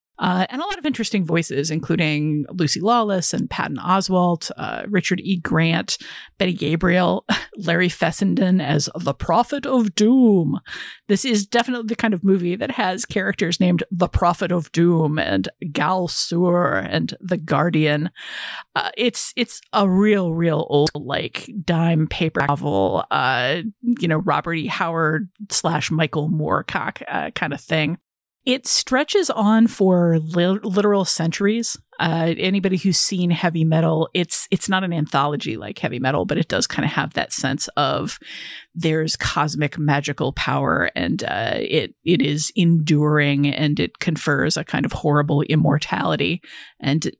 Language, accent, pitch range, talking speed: English, American, 155-195 Hz, 150 wpm